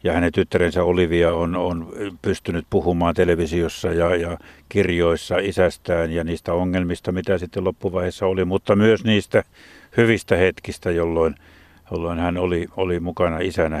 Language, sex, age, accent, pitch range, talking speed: Finnish, male, 60-79, native, 85-105 Hz, 140 wpm